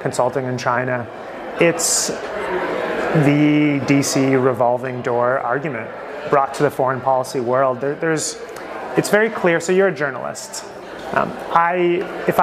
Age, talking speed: 30-49, 130 wpm